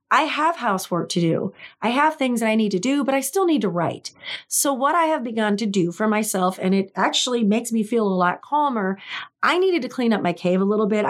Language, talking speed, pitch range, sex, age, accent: English, 255 wpm, 195-250 Hz, female, 30-49, American